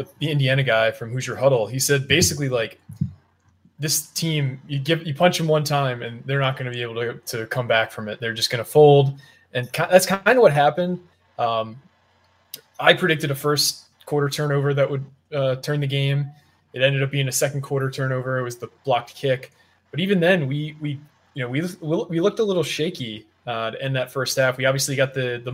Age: 20-39